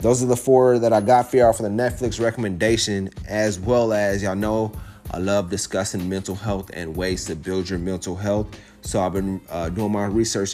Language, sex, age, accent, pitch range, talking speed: English, male, 30-49, American, 100-120 Hz, 210 wpm